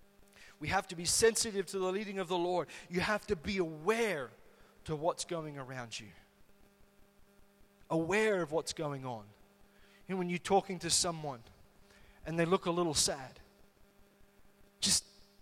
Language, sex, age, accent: English, male, 30-49, Australian